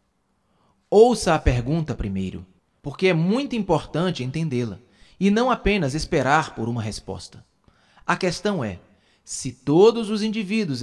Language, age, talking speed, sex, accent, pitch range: Portuguese, 20-39, 125 wpm, male, Brazilian, 115-190 Hz